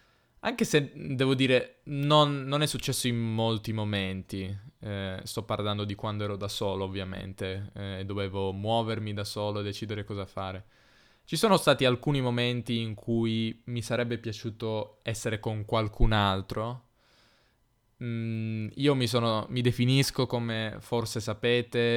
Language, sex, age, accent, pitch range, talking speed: Italian, male, 20-39, native, 105-125 Hz, 140 wpm